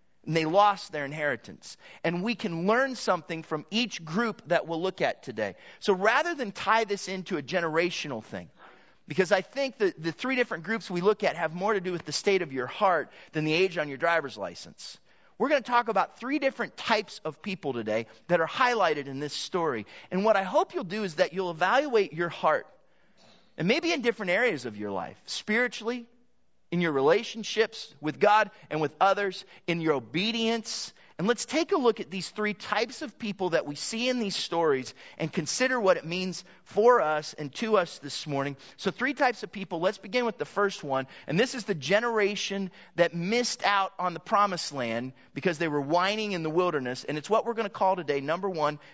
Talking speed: 210 wpm